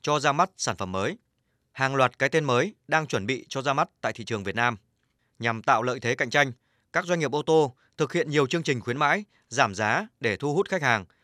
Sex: male